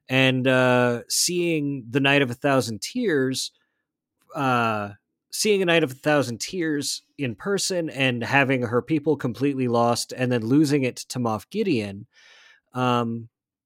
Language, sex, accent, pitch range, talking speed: English, male, American, 125-170 Hz, 145 wpm